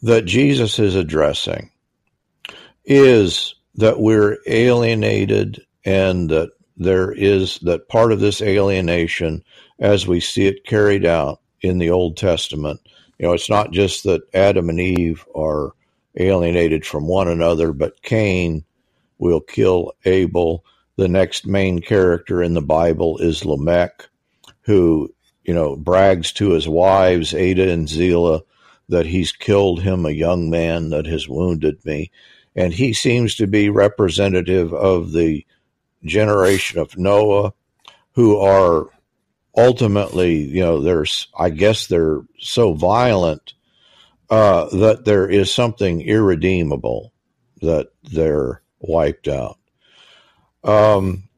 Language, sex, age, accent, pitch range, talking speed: English, male, 50-69, American, 85-105 Hz, 125 wpm